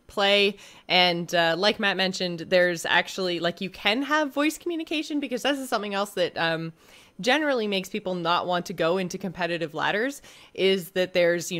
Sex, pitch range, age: female, 170-240 Hz, 20-39